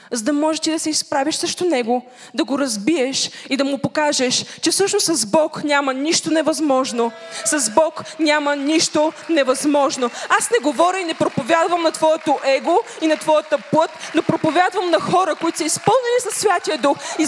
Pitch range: 260-325 Hz